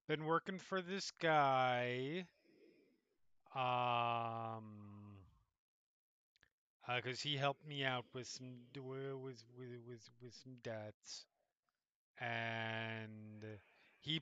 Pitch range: 120-160 Hz